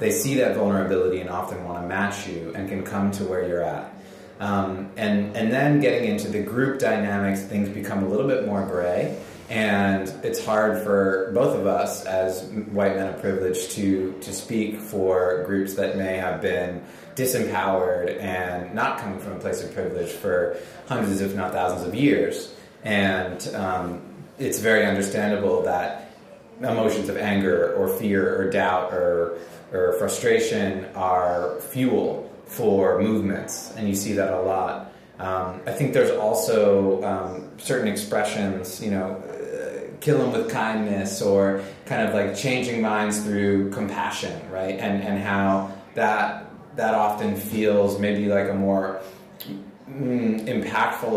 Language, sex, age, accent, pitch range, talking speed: English, male, 30-49, American, 95-105 Hz, 155 wpm